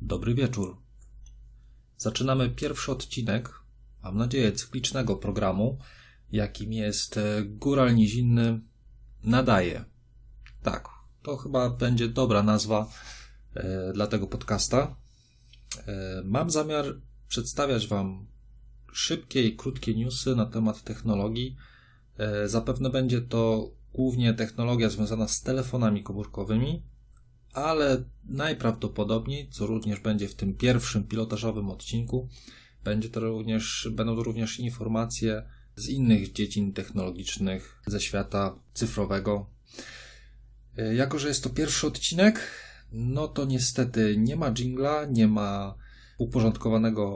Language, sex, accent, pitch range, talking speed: Polish, male, native, 105-125 Hz, 105 wpm